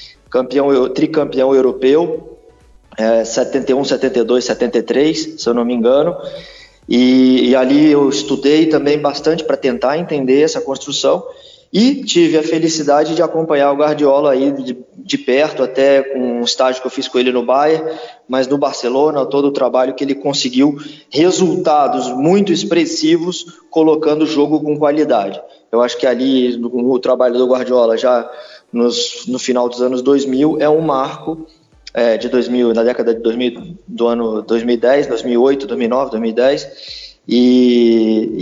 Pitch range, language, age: 125-155 Hz, Portuguese, 20-39